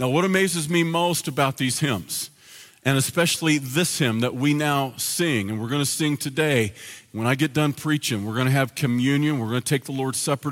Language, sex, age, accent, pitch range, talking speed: English, male, 50-69, American, 135-175 Hz, 220 wpm